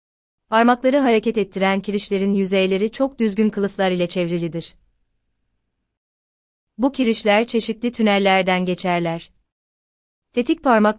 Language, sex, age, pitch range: Turkish, female, 30-49, 175-215 Hz